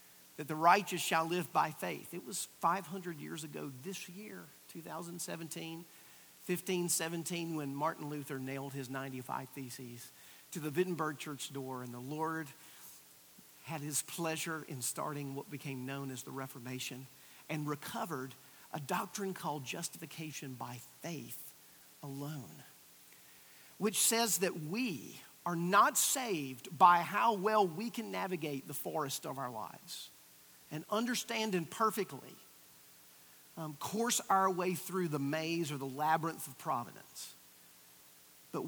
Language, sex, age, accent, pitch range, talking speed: English, male, 50-69, American, 125-180 Hz, 135 wpm